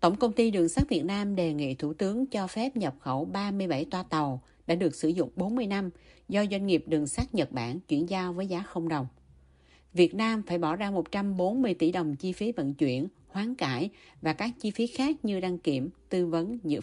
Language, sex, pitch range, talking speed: Vietnamese, female, 155-205 Hz, 220 wpm